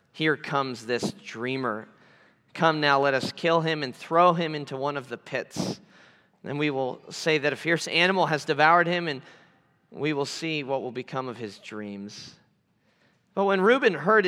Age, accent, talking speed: 30-49, American, 180 wpm